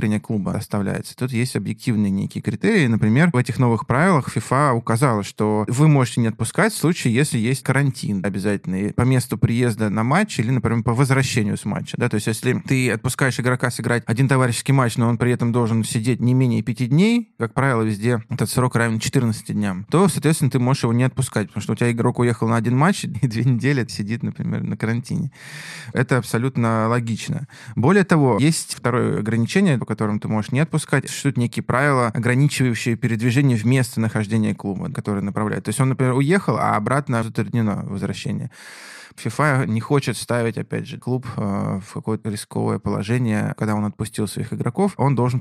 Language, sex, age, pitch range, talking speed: Russian, male, 20-39, 110-135 Hz, 180 wpm